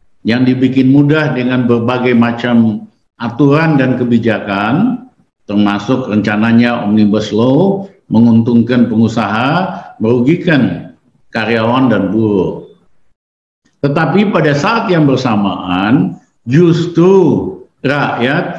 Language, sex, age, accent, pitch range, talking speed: Indonesian, male, 50-69, native, 115-150 Hz, 85 wpm